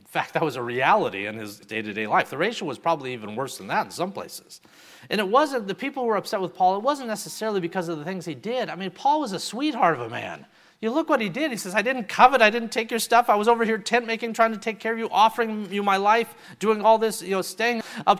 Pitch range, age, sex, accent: 165-225 Hz, 40-59, male, American